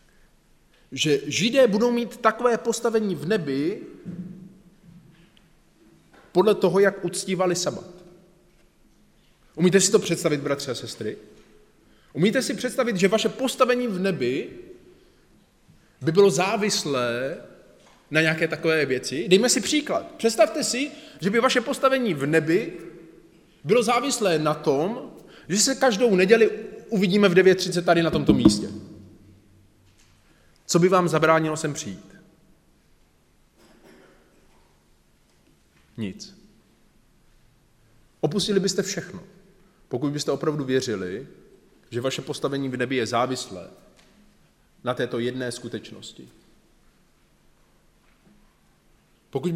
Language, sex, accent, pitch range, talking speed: Czech, male, native, 145-210 Hz, 105 wpm